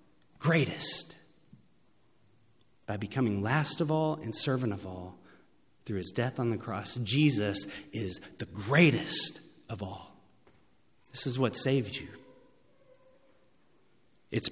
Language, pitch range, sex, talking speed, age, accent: English, 115-180 Hz, male, 115 wpm, 30-49, American